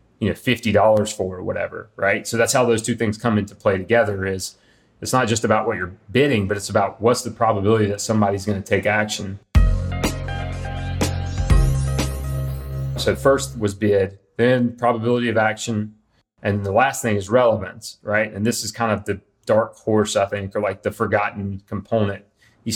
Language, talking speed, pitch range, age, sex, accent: English, 175 wpm, 100-115 Hz, 30-49, male, American